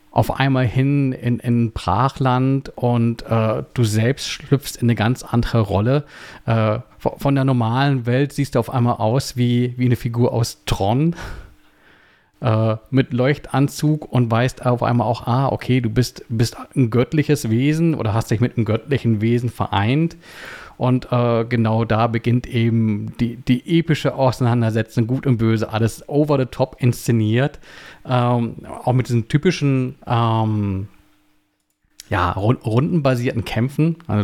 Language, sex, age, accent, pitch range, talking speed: German, male, 40-59, German, 115-130 Hz, 145 wpm